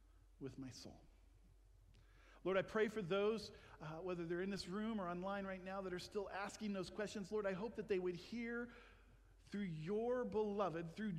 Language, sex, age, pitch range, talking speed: English, male, 50-69, 130-205 Hz, 190 wpm